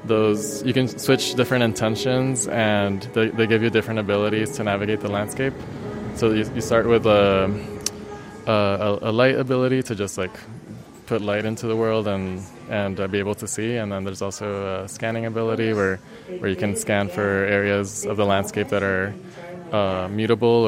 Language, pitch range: German, 100-115 Hz